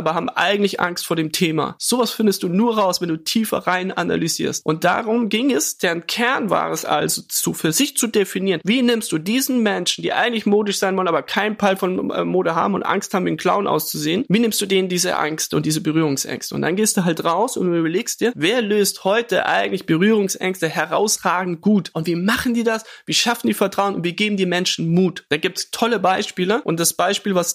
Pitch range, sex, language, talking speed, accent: 170-215 Hz, male, German, 225 wpm, German